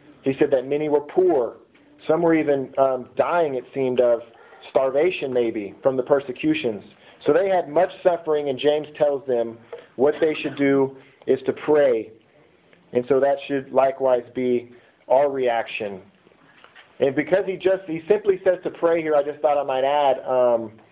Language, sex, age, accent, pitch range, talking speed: English, male, 40-59, American, 125-160 Hz, 170 wpm